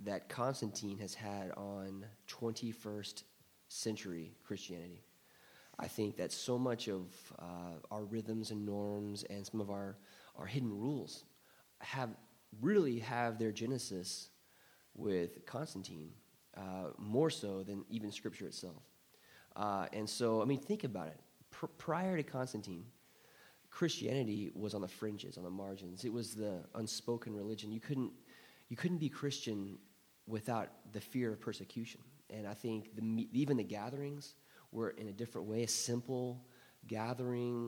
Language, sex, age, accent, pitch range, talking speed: English, male, 20-39, American, 100-125 Hz, 145 wpm